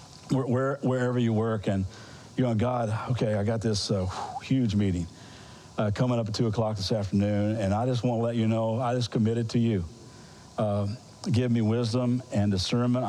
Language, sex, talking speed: English, male, 190 wpm